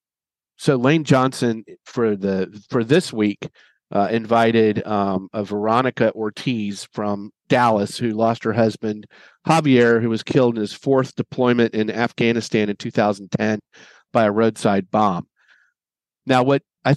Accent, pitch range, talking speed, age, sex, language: American, 105-125 Hz, 140 wpm, 40-59, male, English